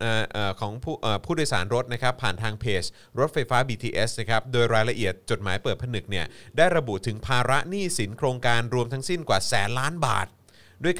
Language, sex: Thai, male